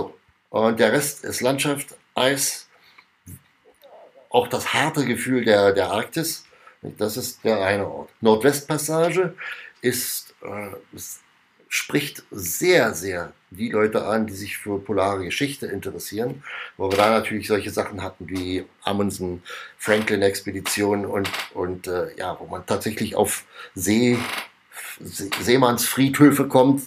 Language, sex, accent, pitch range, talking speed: German, male, German, 105-130 Hz, 125 wpm